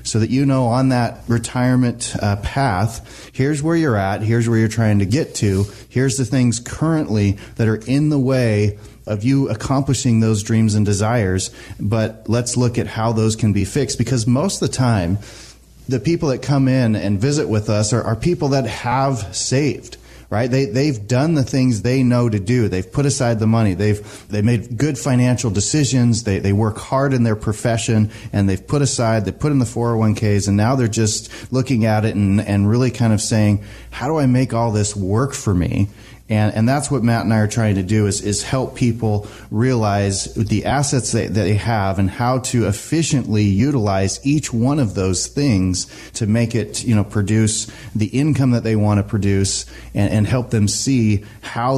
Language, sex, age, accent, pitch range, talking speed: English, male, 30-49, American, 105-130 Hz, 205 wpm